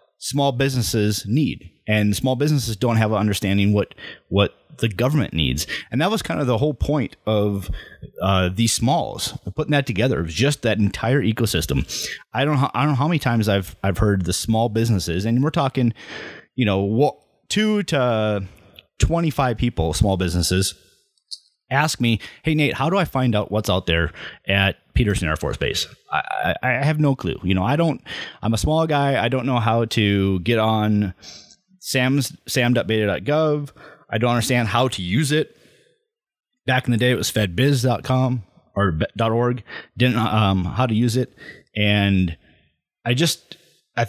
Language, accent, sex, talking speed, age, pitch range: English, American, male, 175 wpm, 30-49, 100-140 Hz